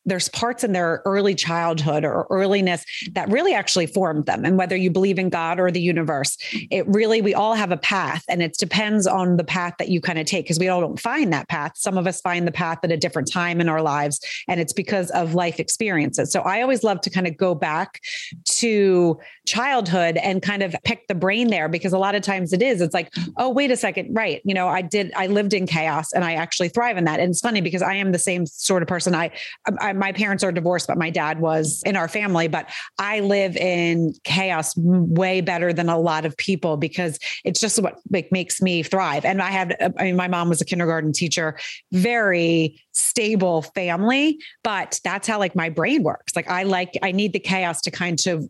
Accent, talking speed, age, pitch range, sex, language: American, 230 wpm, 30-49, 165-195 Hz, female, English